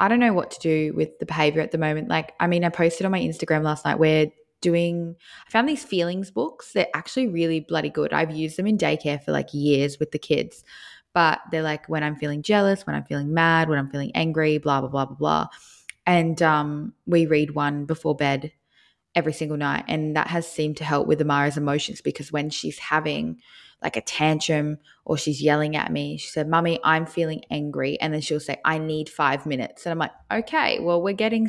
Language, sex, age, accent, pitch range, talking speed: English, female, 20-39, Australian, 150-185 Hz, 225 wpm